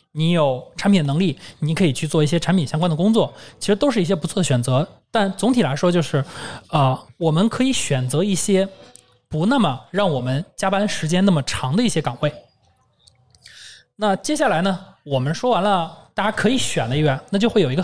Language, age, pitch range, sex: Chinese, 20-39, 145-210 Hz, male